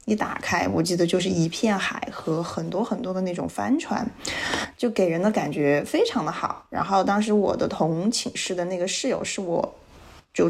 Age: 20-39